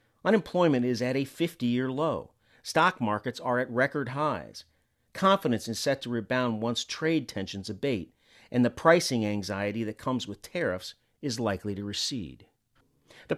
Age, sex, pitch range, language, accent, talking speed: 40-59, male, 115-175 Hz, English, American, 150 wpm